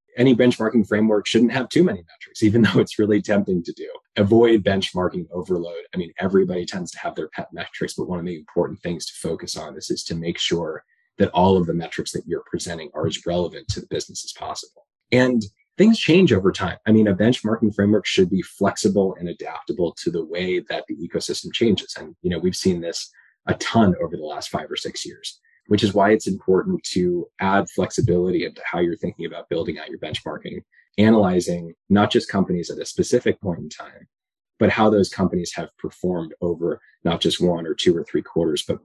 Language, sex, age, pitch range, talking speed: English, male, 20-39, 90-115 Hz, 210 wpm